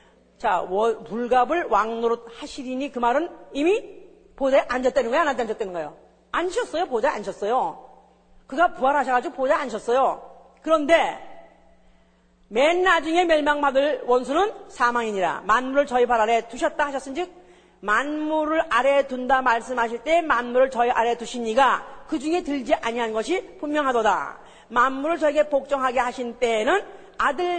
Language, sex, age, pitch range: Korean, female, 40-59, 250-360 Hz